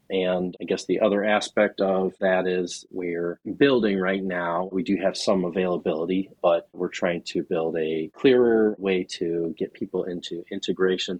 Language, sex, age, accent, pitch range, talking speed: English, male, 40-59, American, 85-105 Hz, 165 wpm